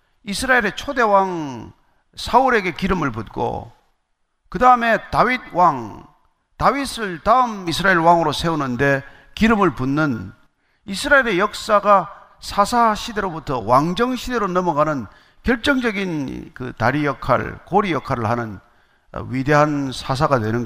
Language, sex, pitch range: Korean, male, 145-235 Hz